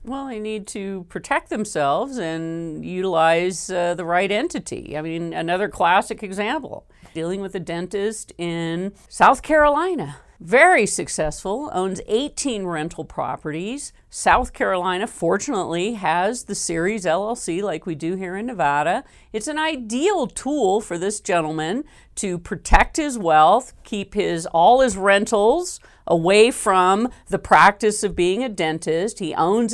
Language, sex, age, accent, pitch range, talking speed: English, female, 50-69, American, 175-235 Hz, 140 wpm